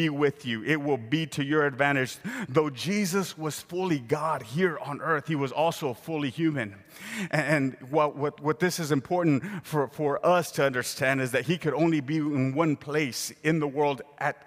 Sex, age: male, 30-49